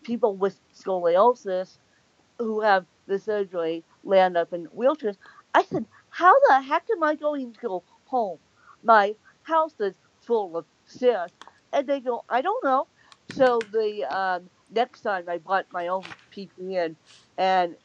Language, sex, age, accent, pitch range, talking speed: English, female, 50-69, American, 170-215 Hz, 150 wpm